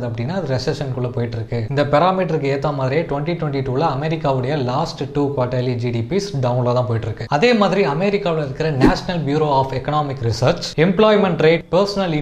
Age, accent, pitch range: 20-39, native, 125-160 Hz